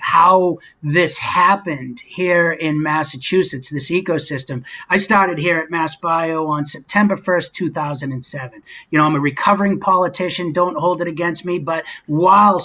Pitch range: 180-235 Hz